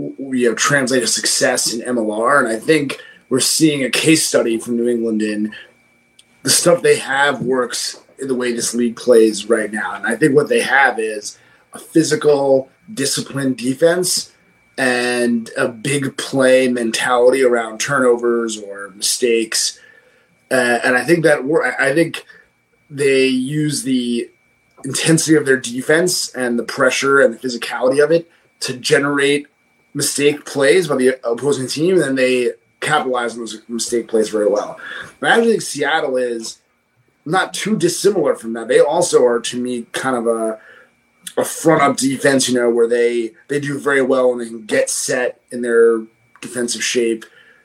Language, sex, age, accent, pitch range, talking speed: English, male, 30-49, American, 120-145 Hz, 165 wpm